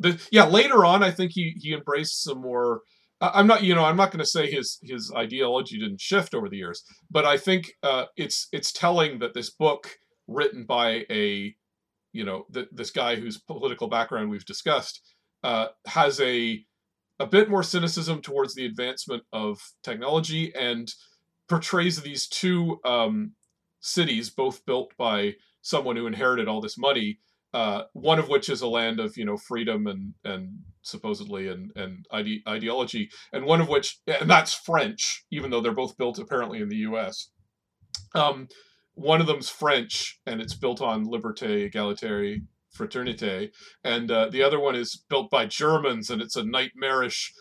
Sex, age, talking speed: male, 40-59, 175 wpm